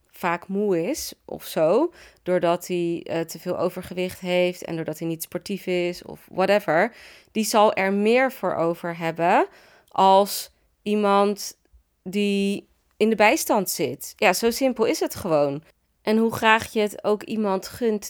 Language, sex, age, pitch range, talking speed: Dutch, female, 30-49, 175-220 Hz, 160 wpm